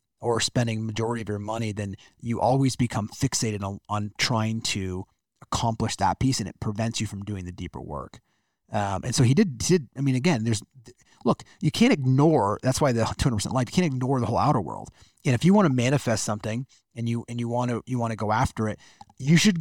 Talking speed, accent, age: 225 wpm, American, 30-49